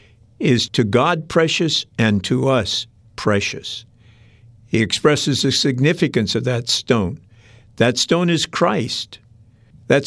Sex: male